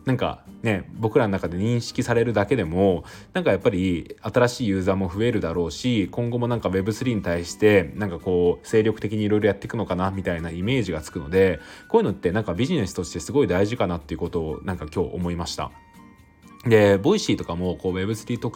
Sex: male